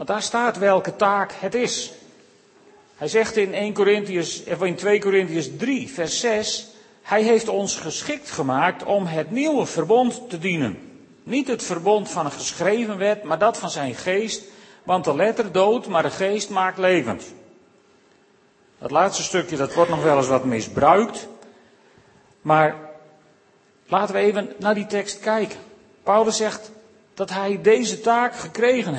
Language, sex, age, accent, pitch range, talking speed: Dutch, male, 40-59, Dutch, 175-230 Hz, 155 wpm